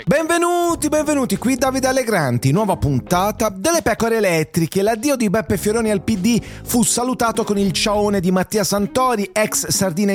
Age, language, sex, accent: 30-49, English, male, Italian